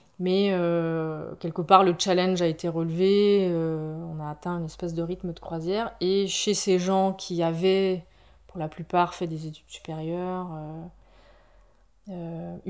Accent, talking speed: French, 155 wpm